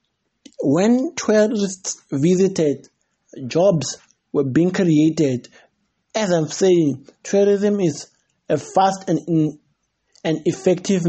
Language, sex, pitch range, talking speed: English, male, 155-190 Hz, 90 wpm